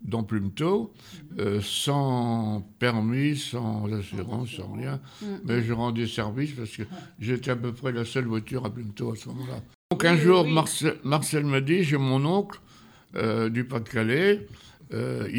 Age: 60-79